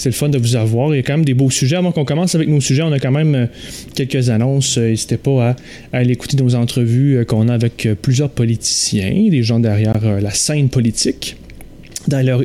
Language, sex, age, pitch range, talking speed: French, male, 30-49, 125-160 Hz, 220 wpm